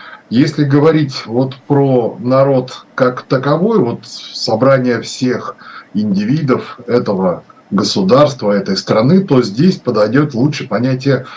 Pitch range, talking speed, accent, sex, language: 120-155 Hz, 105 wpm, native, male, Russian